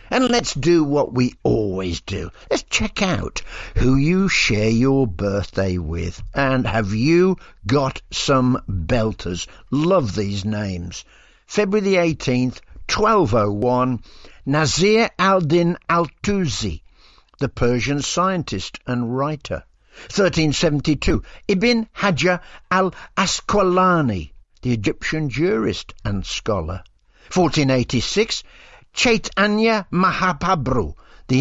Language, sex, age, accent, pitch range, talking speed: English, male, 60-79, British, 115-185 Hz, 95 wpm